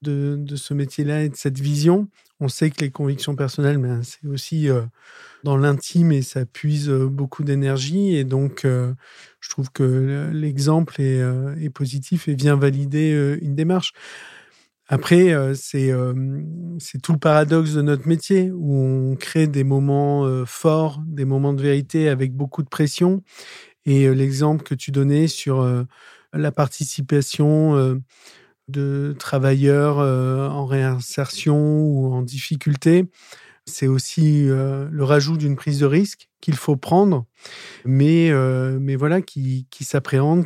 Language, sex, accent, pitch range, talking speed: French, male, French, 135-155 Hz, 160 wpm